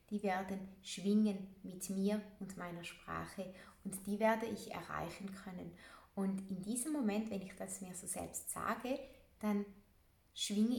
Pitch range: 175-210 Hz